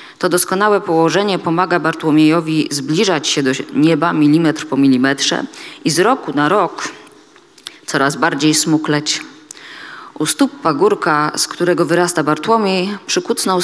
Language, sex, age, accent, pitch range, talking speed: Polish, female, 20-39, native, 140-180 Hz, 125 wpm